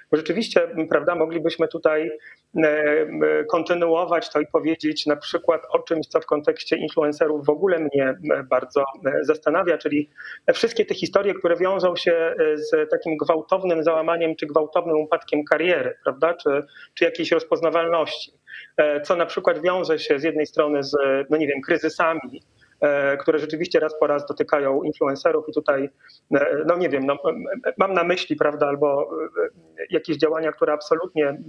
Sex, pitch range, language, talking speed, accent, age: male, 145-170 Hz, Polish, 145 wpm, native, 40-59